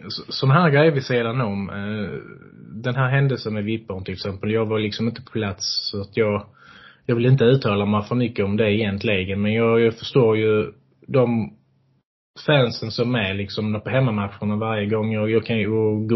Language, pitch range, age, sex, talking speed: Swedish, 105-125 Hz, 20-39, male, 195 wpm